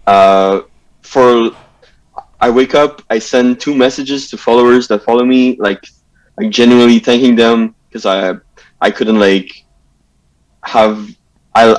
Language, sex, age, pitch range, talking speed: English, male, 20-39, 100-120 Hz, 130 wpm